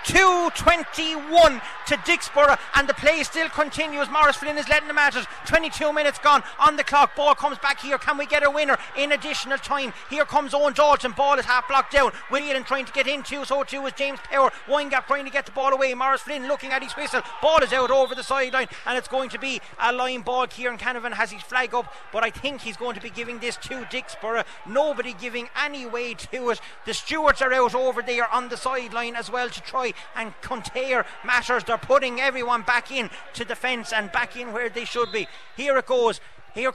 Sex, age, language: male, 30-49, English